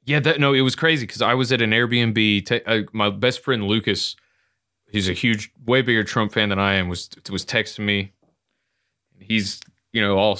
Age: 20-39